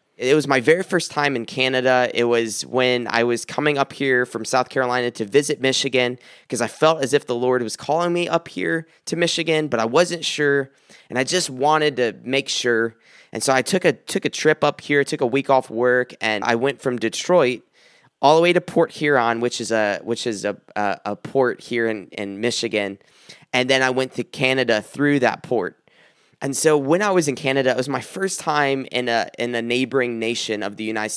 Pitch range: 115-140 Hz